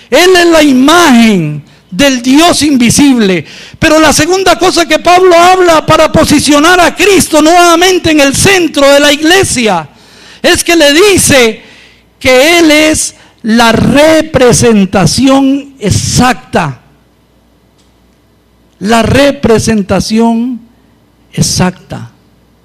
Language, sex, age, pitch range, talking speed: English, male, 50-69, 195-310 Hz, 100 wpm